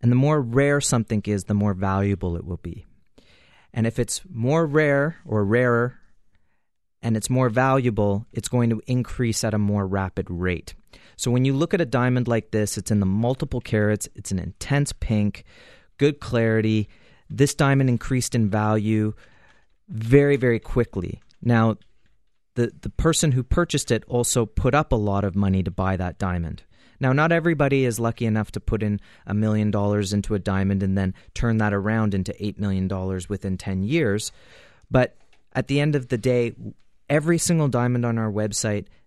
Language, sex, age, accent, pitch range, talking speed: English, male, 30-49, American, 100-125 Hz, 180 wpm